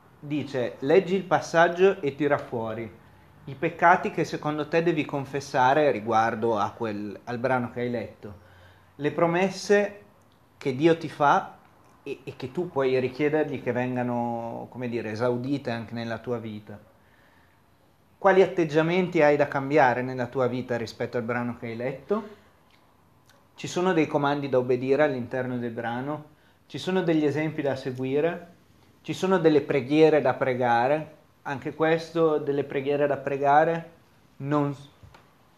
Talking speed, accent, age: 135 wpm, native, 30-49